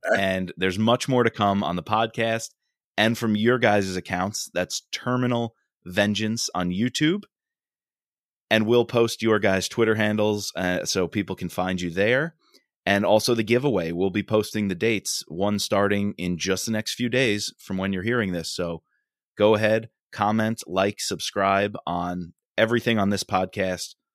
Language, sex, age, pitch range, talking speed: English, male, 20-39, 95-115 Hz, 165 wpm